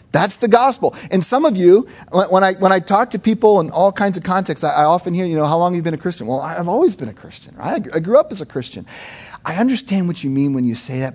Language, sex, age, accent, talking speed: English, male, 40-59, American, 290 wpm